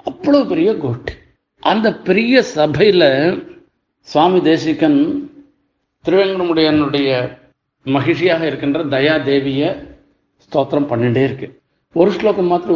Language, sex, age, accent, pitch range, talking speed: Tamil, male, 50-69, native, 145-230 Hz, 85 wpm